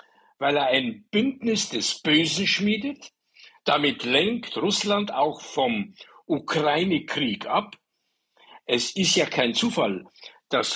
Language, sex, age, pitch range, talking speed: German, male, 60-79, 170-230 Hz, 110 wpm